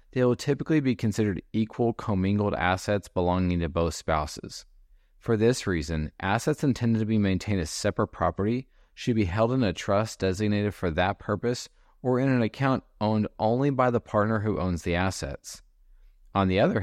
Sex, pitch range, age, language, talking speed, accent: male, 90-115 Hz, 30-49, English, 175 wpm, American